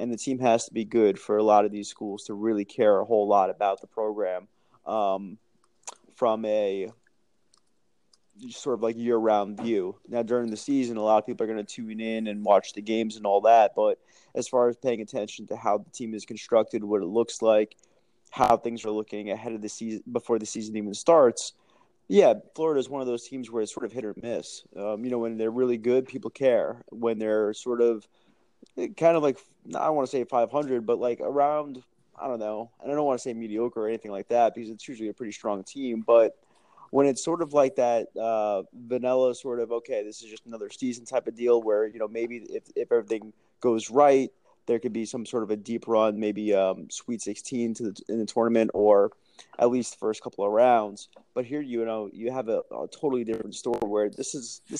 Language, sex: English, male